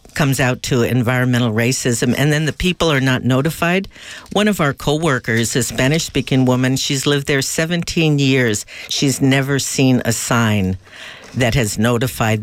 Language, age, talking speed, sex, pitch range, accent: English, 50-69, 155 wpm, female, 130-175 Hz, American